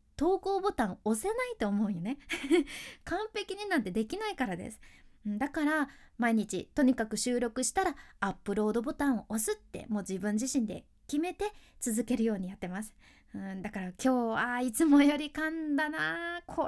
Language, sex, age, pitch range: Japanese, female, 20-39, 225-320 Hz